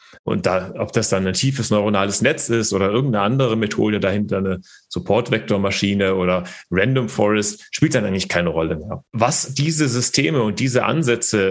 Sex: male